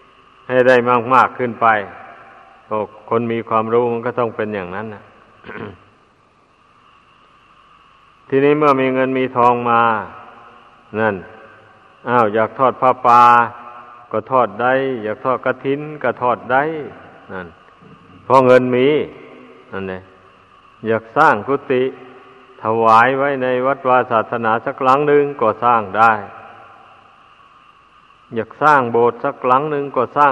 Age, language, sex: 60-79, Thai, male